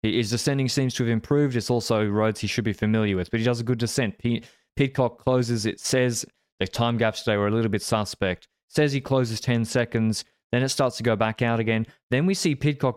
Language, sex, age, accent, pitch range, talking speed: English, male, 20-39, Australian, 105-125 Hz, 230 wpm